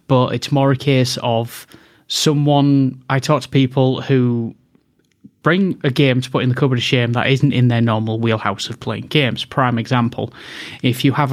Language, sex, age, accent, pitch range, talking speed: English, male, 20-39, British, 125-145 Hz, 190 wpm